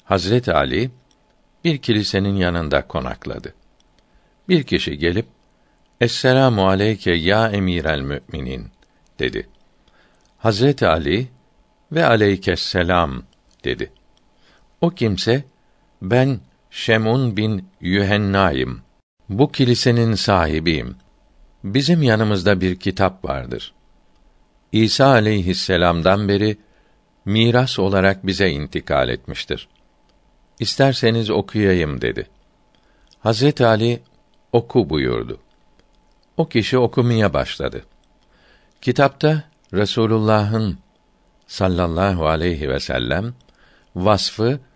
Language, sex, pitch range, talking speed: Turkish, male, 90-120 Hz, 80 wpm